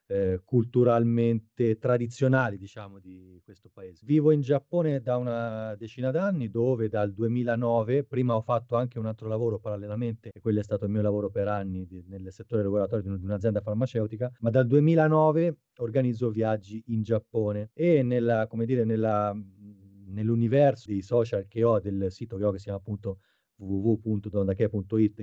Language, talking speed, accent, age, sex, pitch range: Italian, 160 wpm, native, 30-49, male, 105-125 Hz